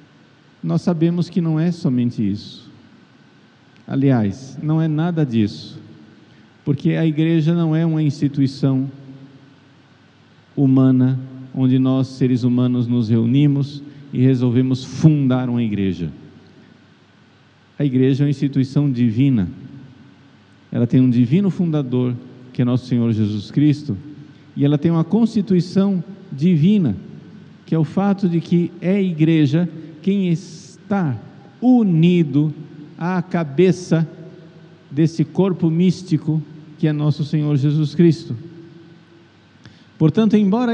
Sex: male